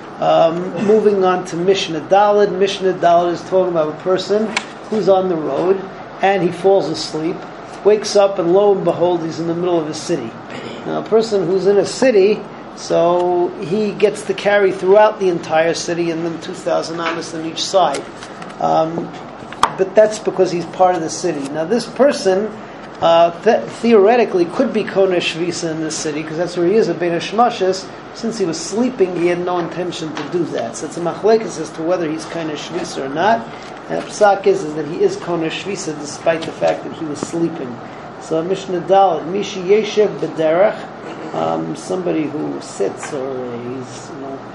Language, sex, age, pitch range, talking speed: English, male, 40-59, 165-200 Hz, 185 wpm